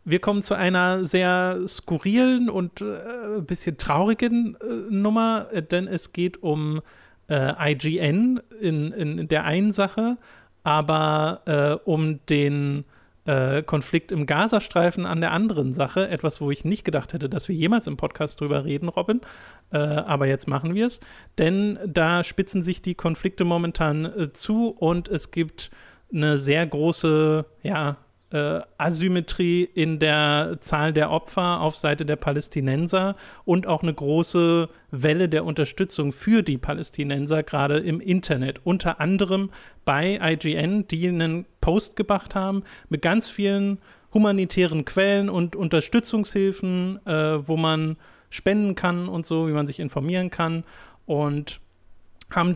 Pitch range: 150-190 Hz